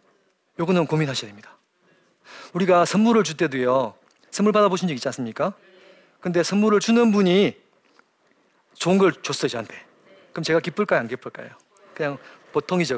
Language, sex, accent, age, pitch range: Korean, male, native, 40-59, 150-200 Hz